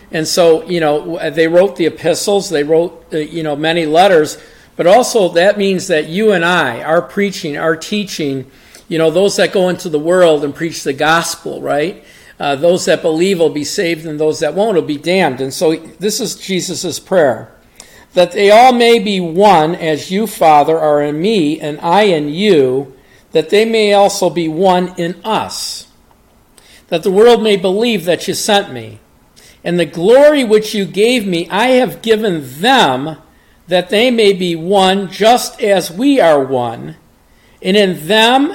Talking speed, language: 180 wpm, English